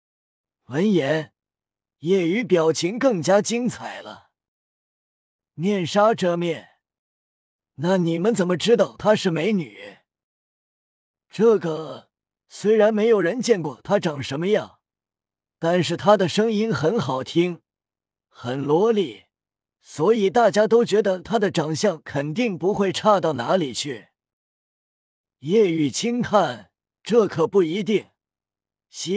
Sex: male